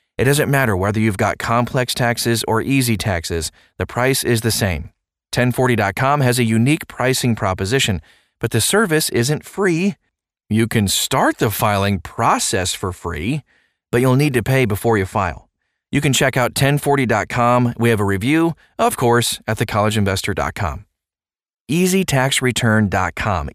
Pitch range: 100-130 Hz